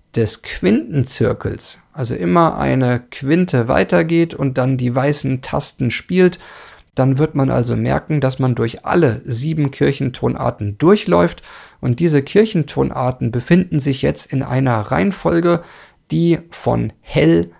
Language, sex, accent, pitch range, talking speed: English, male, German, 120-155 Hz, 125 wpm